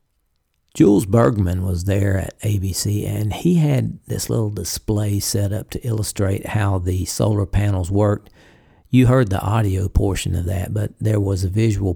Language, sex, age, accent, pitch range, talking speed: English, male, 50-69, American, 95-115 Hz, 165 wpm